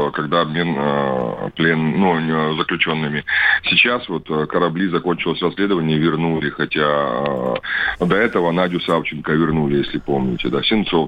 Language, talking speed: Russian, 125 wpm